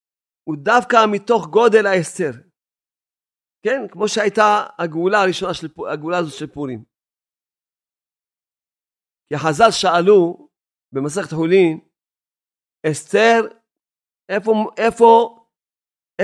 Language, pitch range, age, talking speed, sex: Hebrew, 175-205 Hz, 40-59, 80 wpm, male